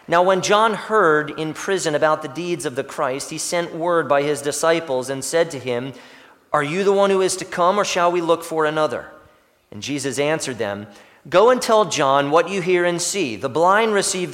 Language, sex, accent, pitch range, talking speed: English, male, American, 155-200 Hz, 220 wpm